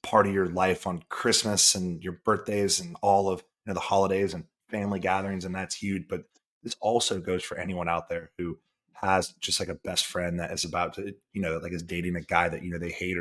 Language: English